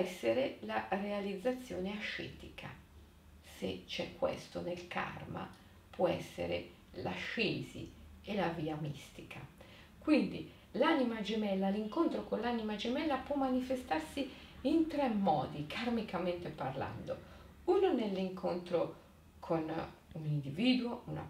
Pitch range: 165-245 Hz